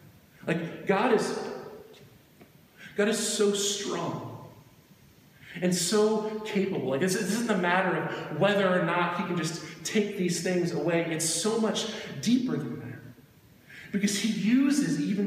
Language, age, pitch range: English, 40-59, 180-240 Hz